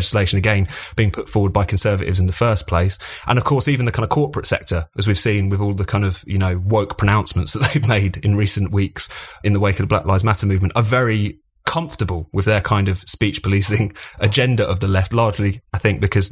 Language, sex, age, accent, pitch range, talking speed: English, male, 30-49, British, 95-110 Hz, 235 wpm